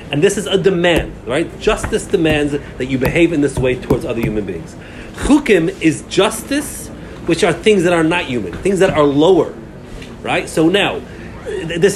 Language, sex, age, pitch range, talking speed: English, male, 40-59, 145-195 Hz, 180 wpm